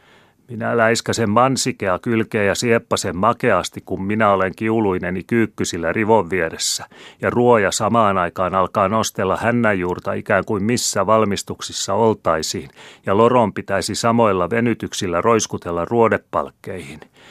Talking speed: 115 wpm